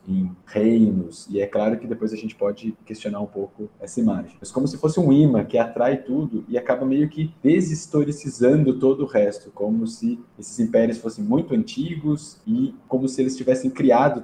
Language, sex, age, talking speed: Portuguese, male, 20-39, 195 wpm